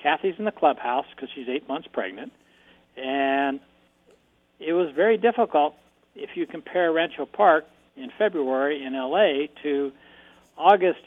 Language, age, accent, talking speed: English, 60-79, American, 135 wpm